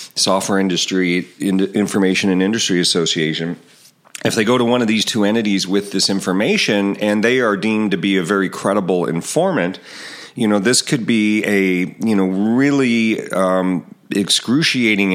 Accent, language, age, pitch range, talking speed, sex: American, English, 40-59, 90-110 Hz, 160 wpm, male